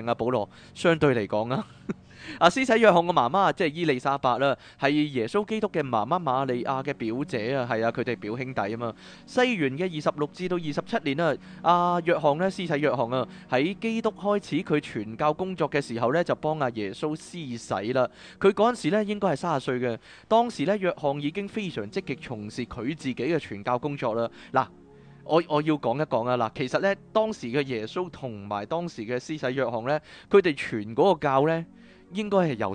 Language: Chinese